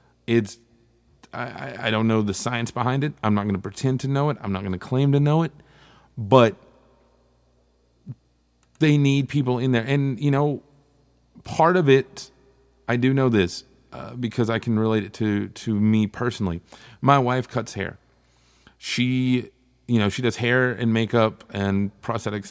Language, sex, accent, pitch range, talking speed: English, male, American, 100-125 Hz, 175 wpm